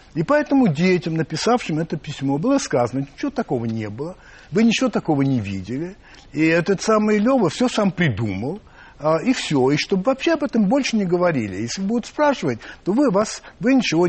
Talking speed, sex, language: 185 wpm, male, Russian